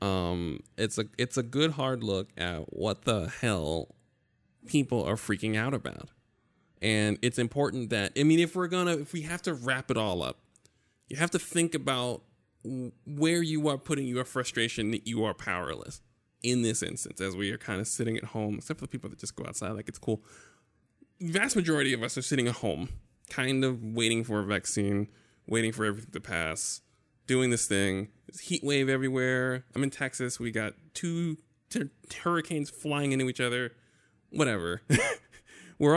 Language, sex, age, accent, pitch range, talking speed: English, male, 20-39, American, 105-140 Hz, 185 wpm